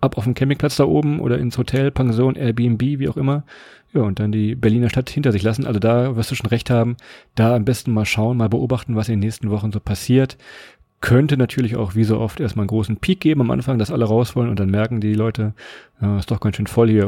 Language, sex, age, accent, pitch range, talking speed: German, male, 40-59, German, 110-140 Hz, 255 wpm